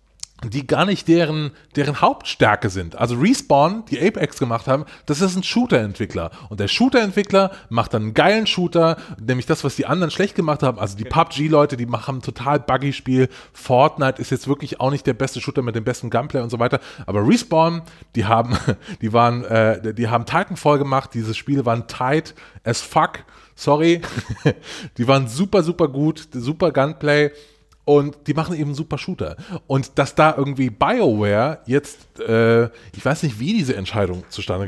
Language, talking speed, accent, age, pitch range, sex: German, 185 wpm, German, 20-39, 120-160 Hz, male